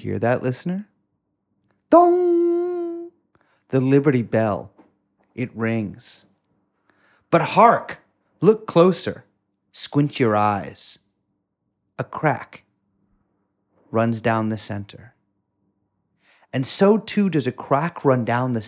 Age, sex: 30-49, male